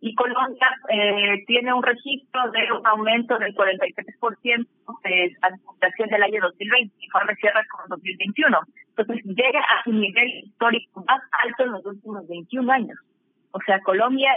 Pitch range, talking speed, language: 190-235 Hz, 165 wpm, Spanish